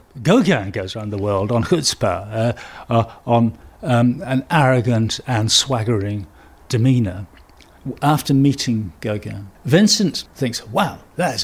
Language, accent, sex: English, British, male